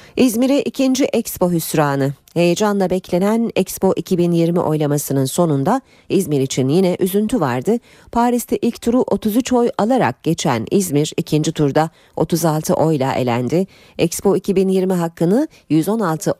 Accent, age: native, 40-59